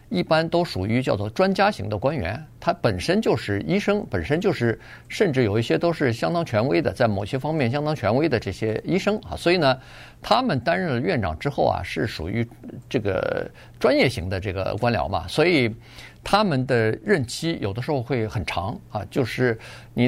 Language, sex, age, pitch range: Chinese, male, 50-69, 110-145 Hz